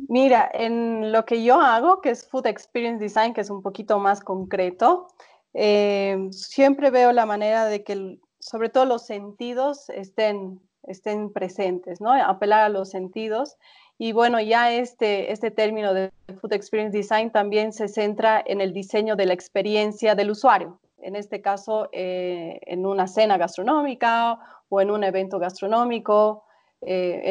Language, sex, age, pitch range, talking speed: Spanish, female, 30-49, 195-225 Hz, 155 wpm